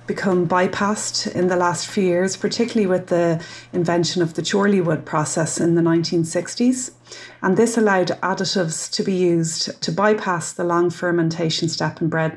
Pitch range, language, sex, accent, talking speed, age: 170-200 Hz, English, female, Irish, 160 wpm, 30-49